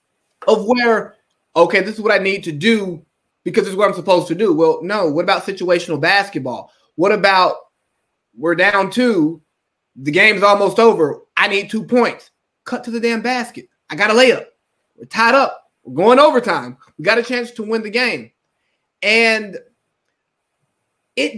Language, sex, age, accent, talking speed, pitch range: English, male, 30-49, American, 170 wpm, 155-230 Hz